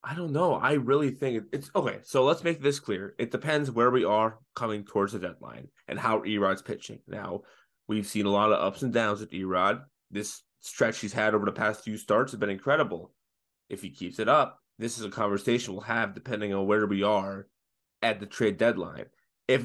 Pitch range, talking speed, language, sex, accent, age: 105-135 Hz, 215 wpm, English, male, American, 20-39